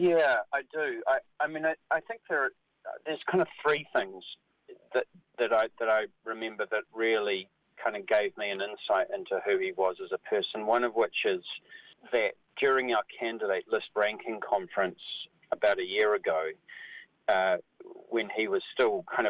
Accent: Australian